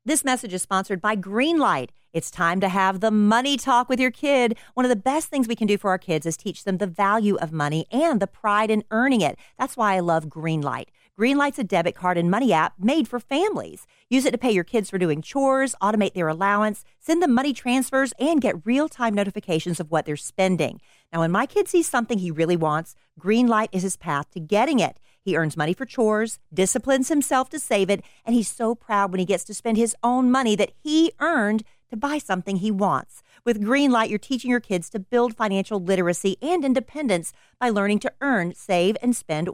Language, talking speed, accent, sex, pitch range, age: English, 220 wpm, American, female, 185-250 Hz, 40-59